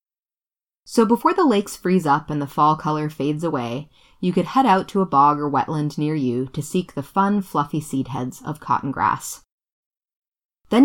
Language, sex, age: English, female, 20-39